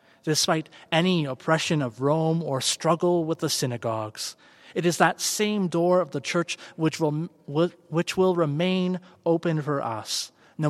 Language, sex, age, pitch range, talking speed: English, male, 30-49, 135-165 Hz, 150 wpm